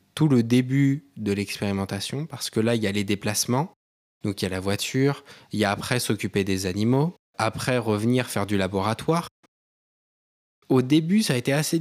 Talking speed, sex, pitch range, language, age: 190 wpm, male, 105-135 Hz, French, 20-39